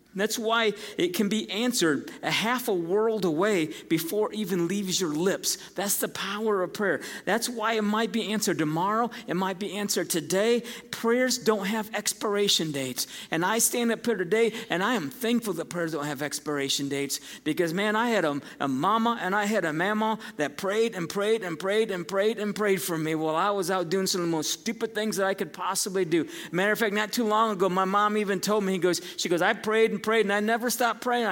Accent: American